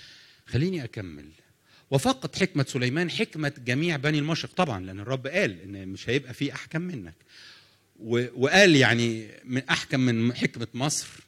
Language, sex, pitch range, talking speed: English, male, 115-150 Hz, 145 wpm